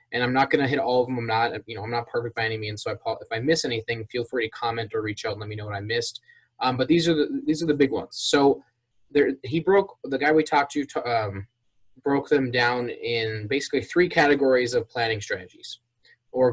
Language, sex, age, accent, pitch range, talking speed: English, male, 20-39, American, 115-145 Hz, 255 wpm